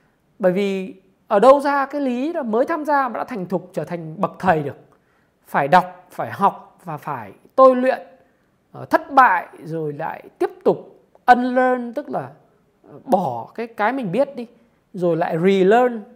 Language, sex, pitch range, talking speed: Vietnamese, male, 185-265 Hz, 170 wpm